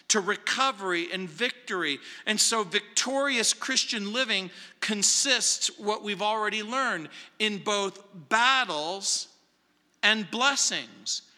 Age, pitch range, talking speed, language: 50-69, 180-235 Hz, 100 wpm, English